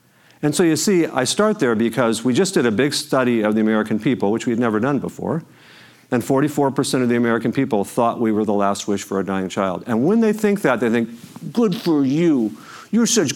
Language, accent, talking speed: English, American, 235 wpm